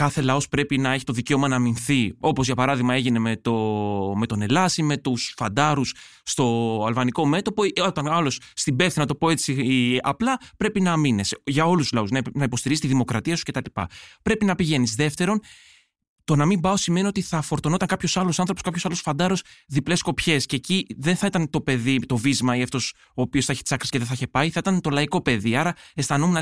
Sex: male